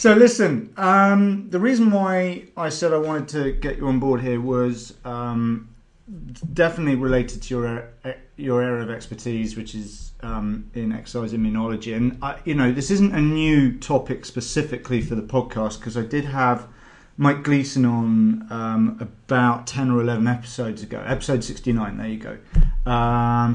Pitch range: 115-145 Hz